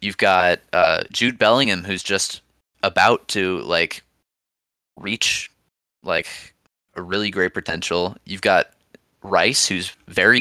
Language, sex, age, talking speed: English, male, 20-39, 120 wpm